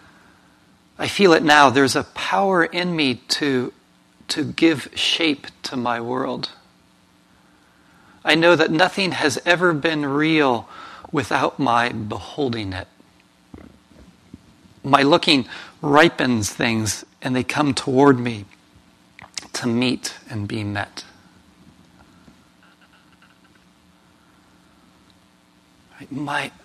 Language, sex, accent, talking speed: English, male, American, 95 wpm